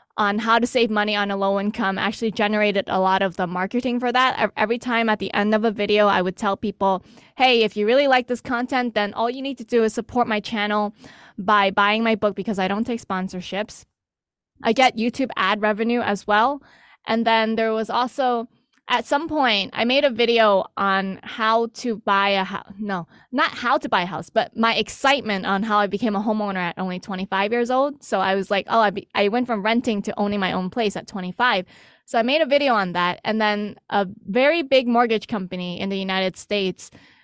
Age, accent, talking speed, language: 20-39, American, 220 wpm, English